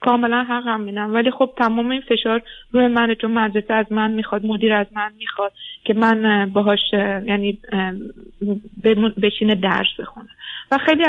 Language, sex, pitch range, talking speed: Persian, female, 210-255 Hz, 145 wpm